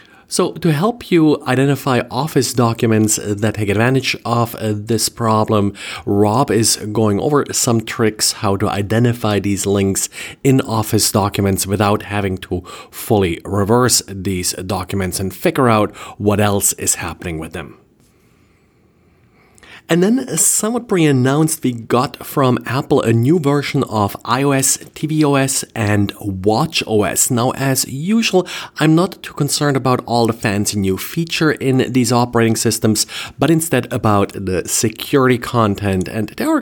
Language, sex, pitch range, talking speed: English, male, 105-135 Hz, 140 wpm